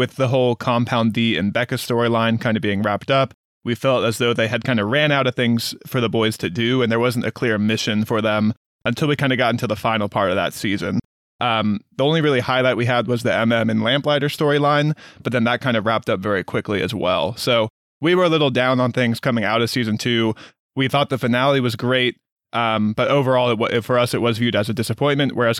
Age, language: 20-39, English